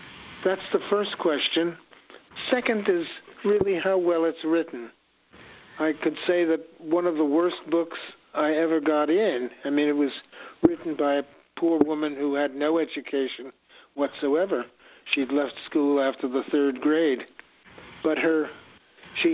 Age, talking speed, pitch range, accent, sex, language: 60-79, 150 wpm, 140-165 Hz, American, male, English